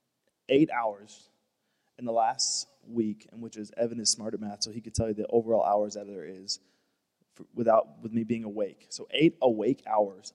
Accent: American